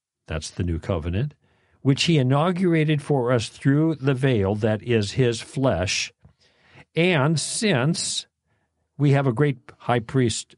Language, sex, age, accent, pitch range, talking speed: English, male, 50-69, American, 110-145 Hz, 135 wpm